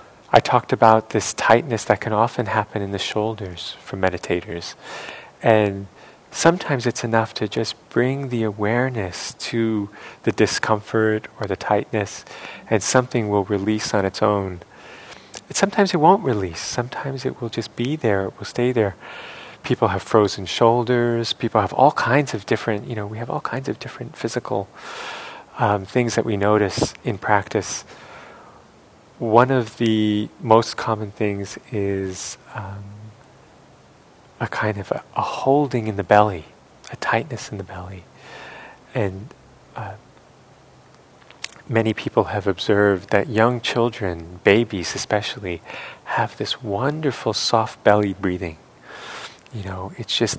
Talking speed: 145 wpm